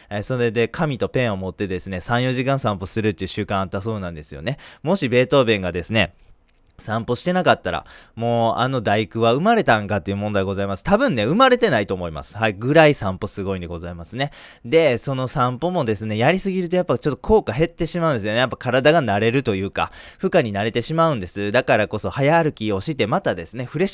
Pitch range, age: 95-130 Hz, 20-39